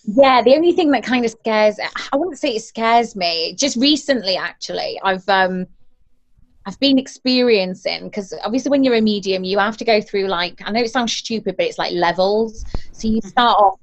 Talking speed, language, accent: 195 wpm, English, British